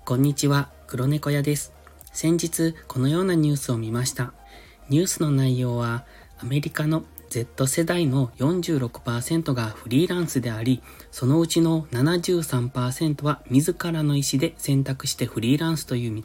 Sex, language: male, Japanese